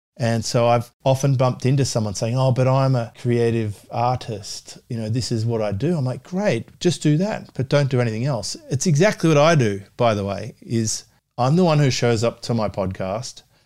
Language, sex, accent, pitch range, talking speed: English, male, Australian, 105-125 Hz, 220 wpm